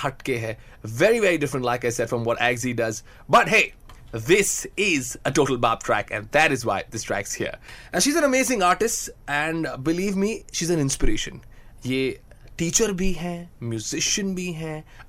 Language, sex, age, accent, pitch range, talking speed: Hindi, male, 20-39, native, 135-205 Hz, 180 wpm